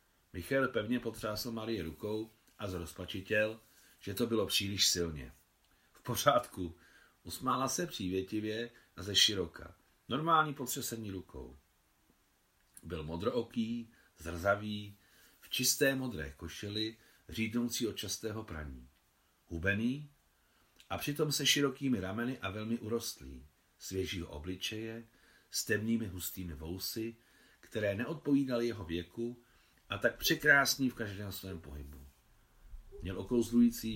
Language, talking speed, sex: Czech, 110 wpm, male